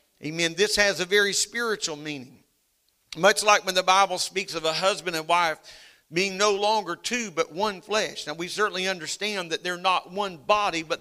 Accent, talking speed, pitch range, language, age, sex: American, 190 wpm, 150-185 Hz, English, 50-69, male